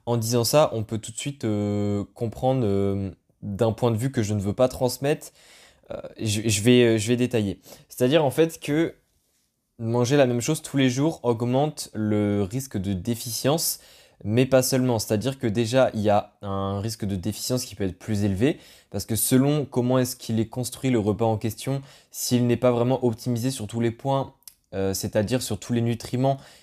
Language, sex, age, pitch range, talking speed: French, male, 20-39, 105-130 Hz, 200 wpm